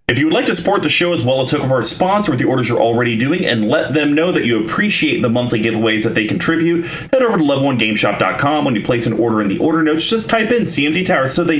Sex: male